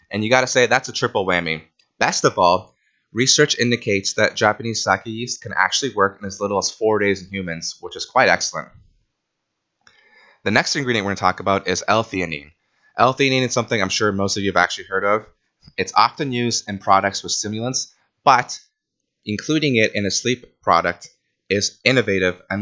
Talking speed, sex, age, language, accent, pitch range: 190 wpm, male, 20-39, English, American, 95-120 Hz